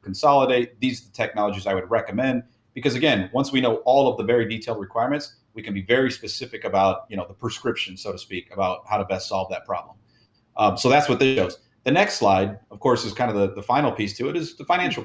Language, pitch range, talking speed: English, 100-130 Hz, 245 wpm